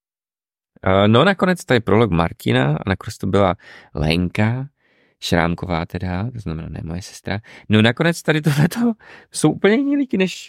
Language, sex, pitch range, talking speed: Czech, male, 95-155 Hz, 150 wpm